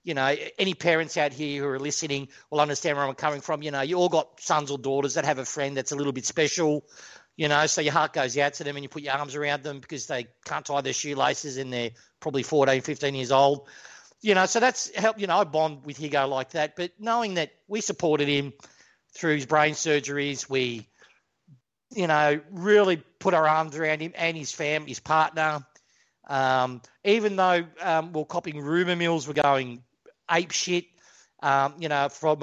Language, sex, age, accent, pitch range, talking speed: English, male, 40-59, Australian, 145-175 Hz, 210 wpm